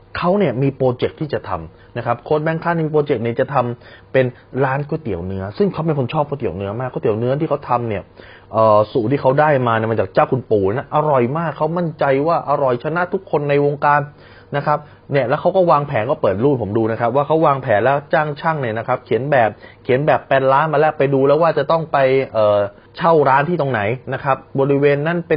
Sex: male